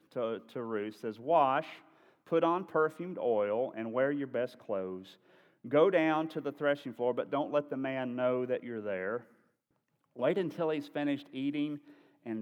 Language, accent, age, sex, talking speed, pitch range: English, American, 40-59, male, 170 wpm, 120-150 Hz